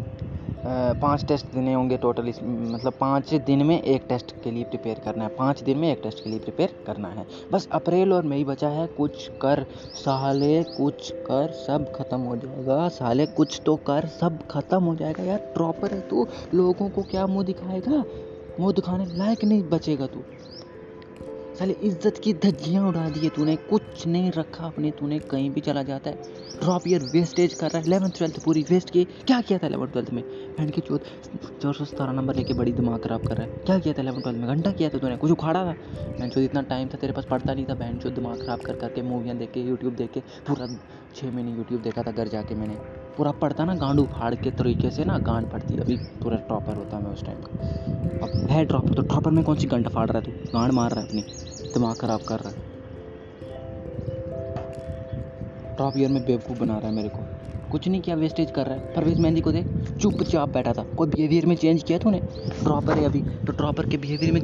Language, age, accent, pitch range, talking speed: Hindi, 20-39, native, 120-160 Hz, 215 wpm